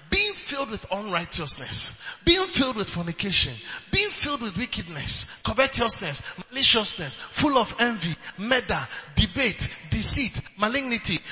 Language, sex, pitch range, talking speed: English, male, 245-310 Hz, 110 wpm